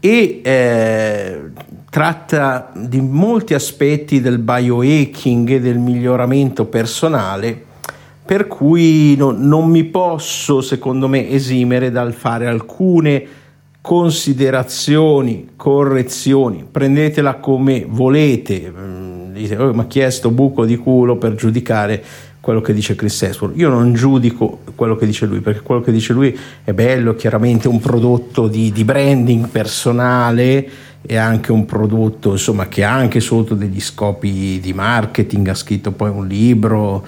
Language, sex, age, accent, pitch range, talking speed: Italian, male, 50-69, native, 110-135 Hz, 130 wpm